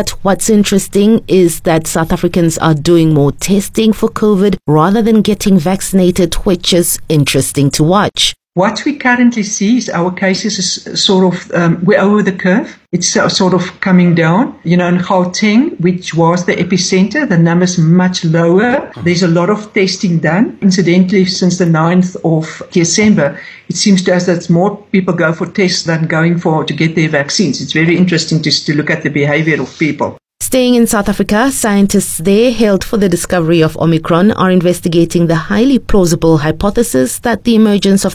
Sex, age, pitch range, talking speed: female, 60-79, 160-205 Hz, 180 wpm